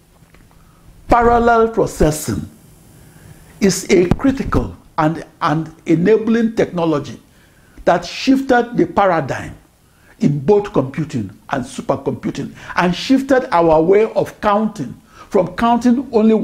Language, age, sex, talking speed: English, 60-79, male, 100 wpm